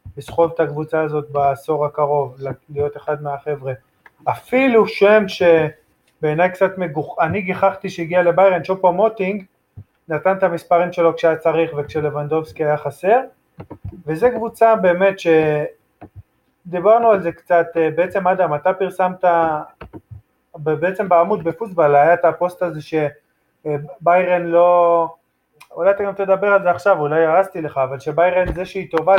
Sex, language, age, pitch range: male, Hebrew, 20-39, 155-190 Hz